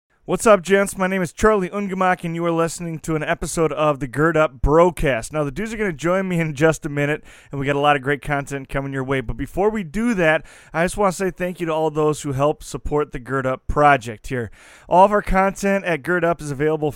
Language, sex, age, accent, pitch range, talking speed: English, male, 30-49, American, 140-175 Hz, 265 wpm